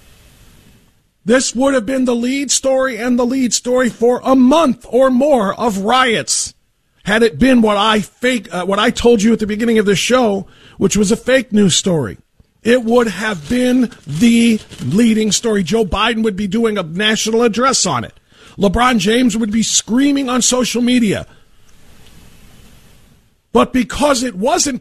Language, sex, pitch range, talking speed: English, male, 205-255 Hz, 170 wpm